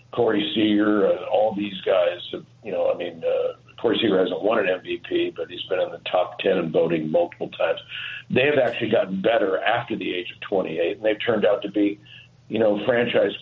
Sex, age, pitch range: male, 50-69, 105-130 Hz